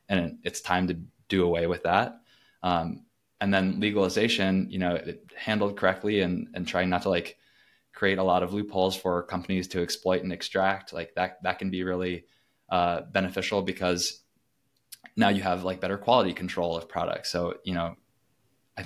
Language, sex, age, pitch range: English, male, 20-39, 90-100 Hz